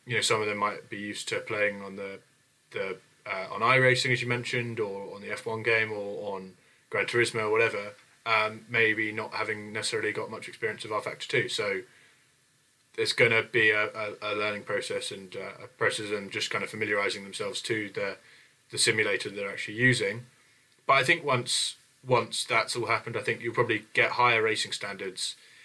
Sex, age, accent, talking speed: male, 20-39, British, 200 wpm